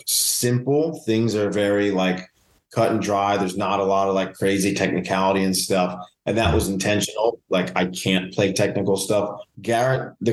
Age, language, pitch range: 20-39, English, 95-115 Hz